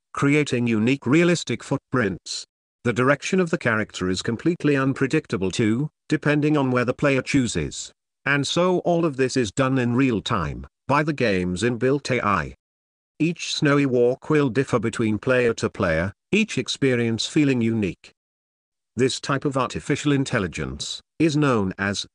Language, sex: English, male